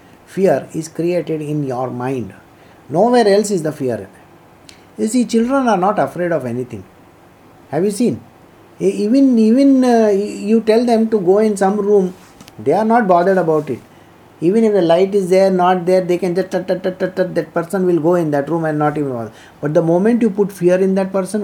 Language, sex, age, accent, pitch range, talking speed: English, male, 50-69, Indian, 140-205 Hz, 195 wpm